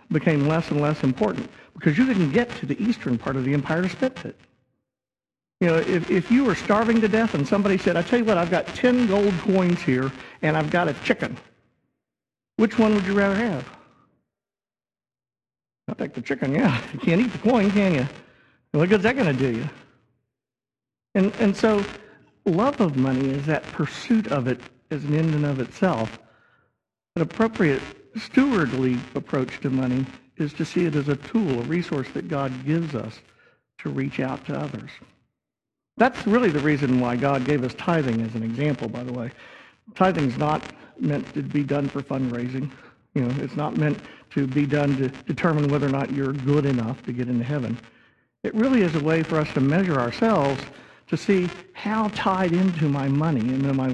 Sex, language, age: male, English, 50-69